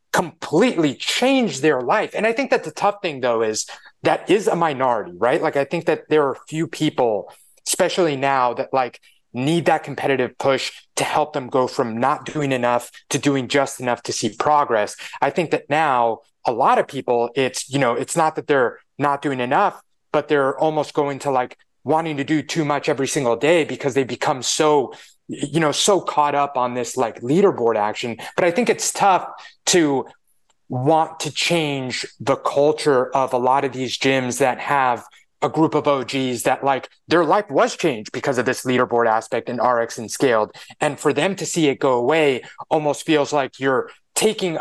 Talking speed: 200 wpm